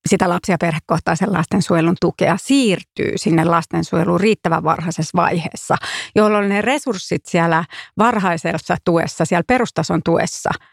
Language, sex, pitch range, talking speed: Finnish, female, 170-205 Hz, 110 wpm